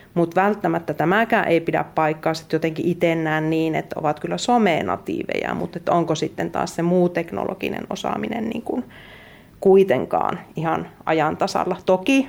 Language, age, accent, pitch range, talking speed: Finnish, 30-49, native, 170-200 Hz, 135 wpm